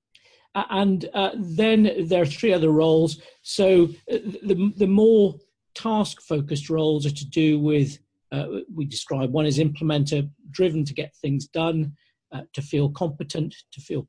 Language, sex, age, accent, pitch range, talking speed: English, male, 50-69, British, 140-175 Hz, 160 wpm